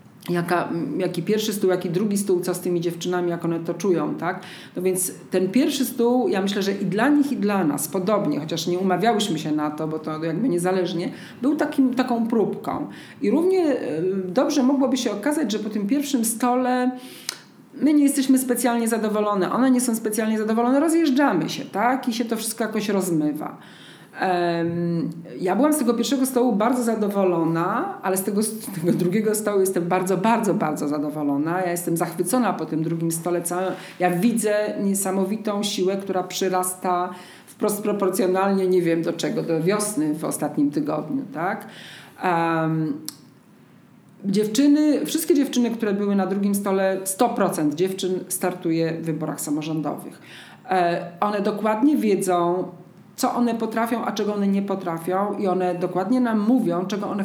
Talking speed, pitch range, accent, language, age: 160 wpm, 180-230 Hz, native, Polish, 40-59